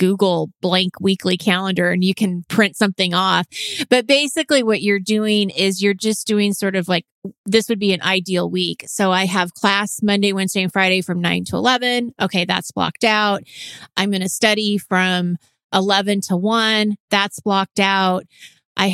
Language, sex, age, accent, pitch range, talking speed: English, female, 30-49, American, 185-215 Hz, 175 wpm